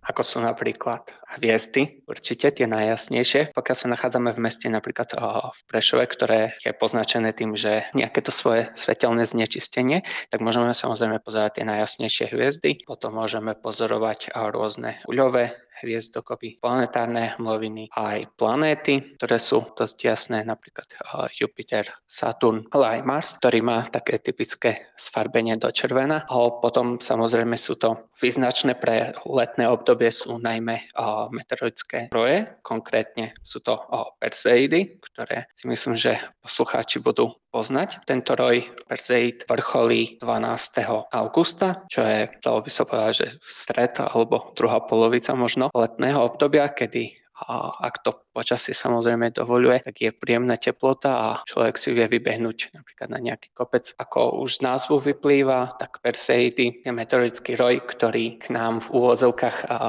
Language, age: Slovak, 20-39